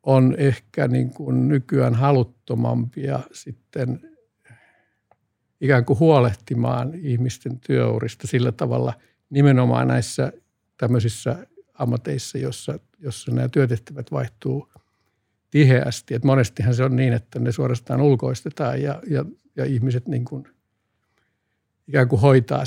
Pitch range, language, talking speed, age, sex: 120-140 Hz, Finnish, 110 wpm, 60-79, male